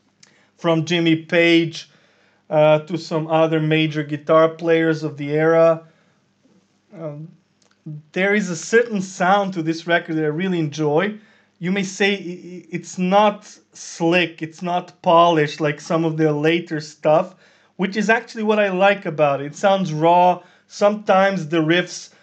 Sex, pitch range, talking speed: male, 160-195 Hz, 150 wpm